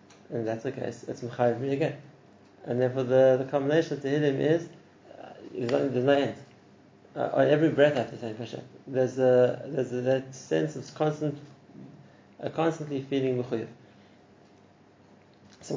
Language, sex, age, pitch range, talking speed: English, male, 30-49, 120-145 Hz, 155 wpm